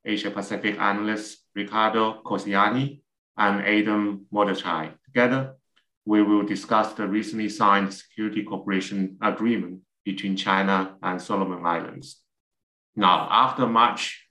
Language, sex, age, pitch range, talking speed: English, male, 30-49, 100-115 Hz, 105 wpm